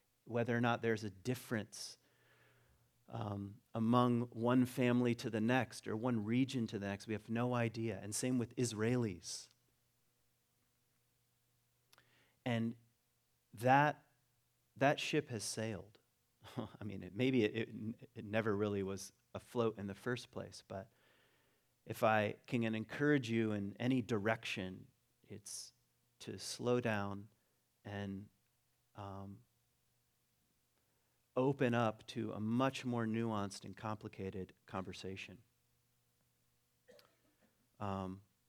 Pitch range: 100-125 Hz